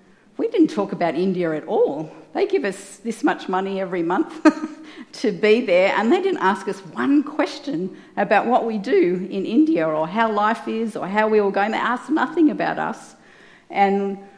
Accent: Australian